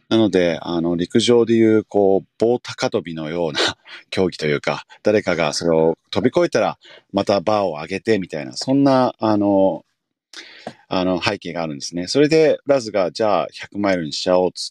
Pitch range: 85-110 Hz